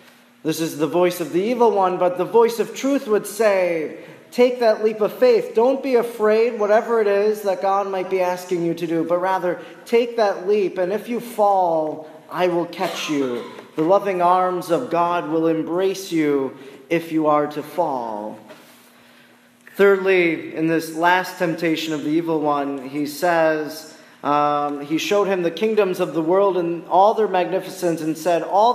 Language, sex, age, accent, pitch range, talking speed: English, male, 30-49, American, 170-215 Hz, 180 wpm